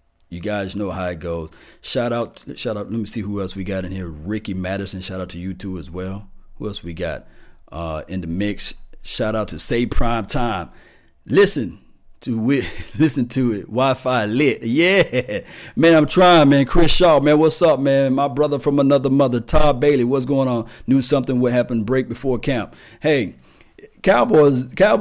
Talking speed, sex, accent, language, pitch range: 190 wpm, male, American, English, 100-135 Hz